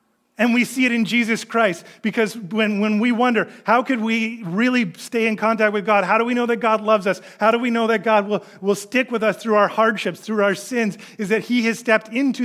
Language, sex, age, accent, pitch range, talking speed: English, male, 30-49, American, 135-220 Hz, 250 wpm